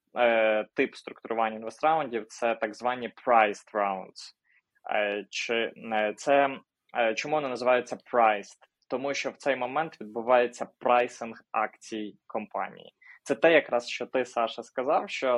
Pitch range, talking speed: 115-130 Hz, 125 wpm